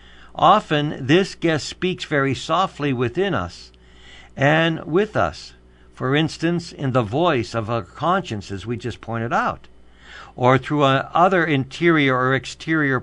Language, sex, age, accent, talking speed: English, male, 60-79, American, 140 wpm